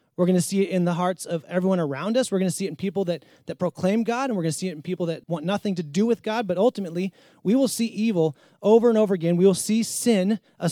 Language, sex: English, male